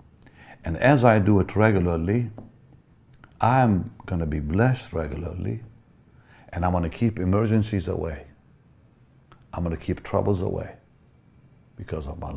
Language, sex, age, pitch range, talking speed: English, male, 60-79, 85-125 Hz, 120 wpm